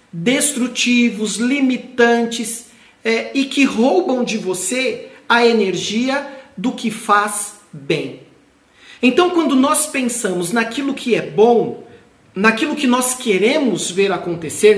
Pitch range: 195-245 Hz